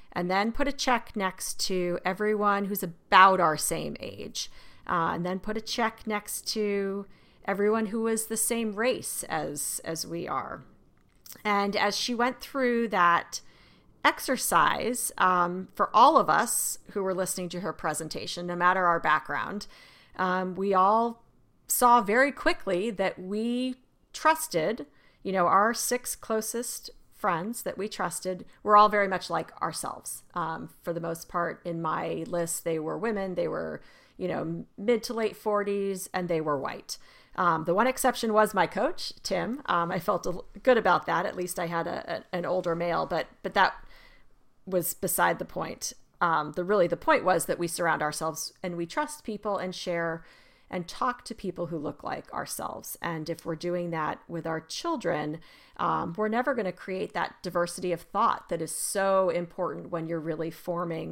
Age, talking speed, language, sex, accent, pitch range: 40-59, 175 wpm, English, female, American, 170-220 Hz